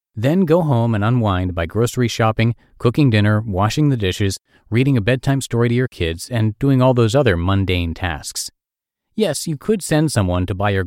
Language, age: English, 40-59